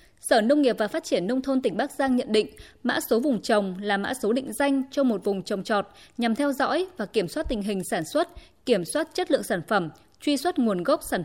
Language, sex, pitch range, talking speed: Vietnamese, female, 210-270 Hz, 255 wpm